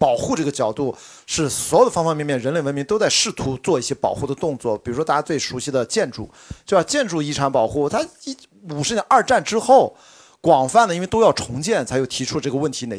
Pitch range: 130-190 Hz